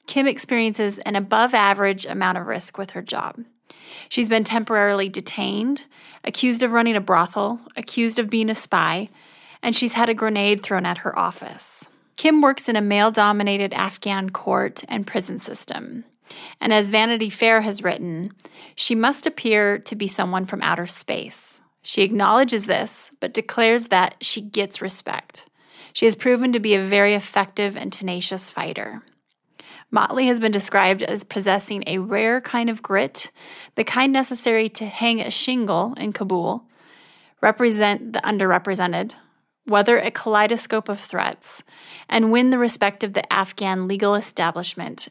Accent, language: American, English